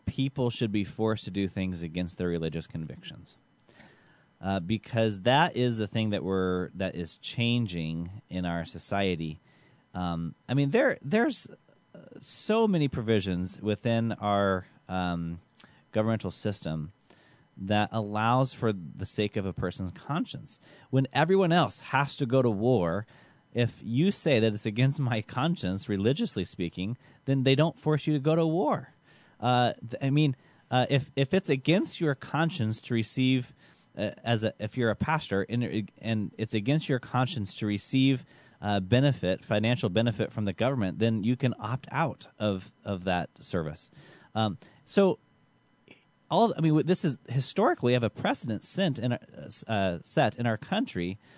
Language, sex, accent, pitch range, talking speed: English, male, American, 100-135 Hz, 160 wpm